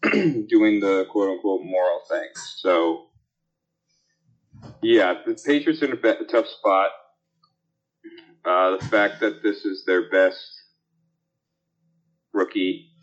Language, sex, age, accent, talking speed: English, male, 30-49, American, 120 wpm